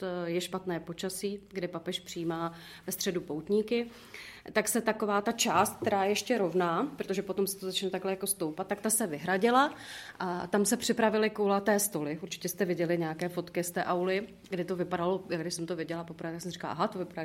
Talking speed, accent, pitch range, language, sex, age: 190 wpm, native, 175-210 Hz, Czech, female, 30-49